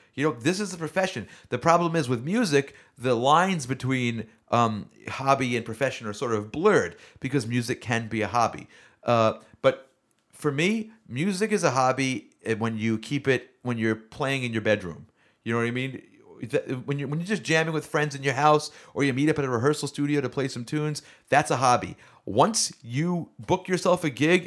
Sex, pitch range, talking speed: male, 110-150 Hz, 200 wpm